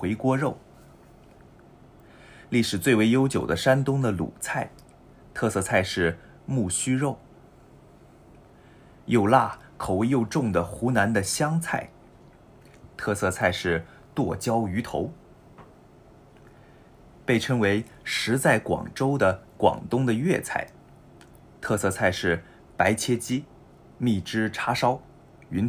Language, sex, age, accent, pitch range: Japanese, male, 30-49, Chinese, 95-130 Hz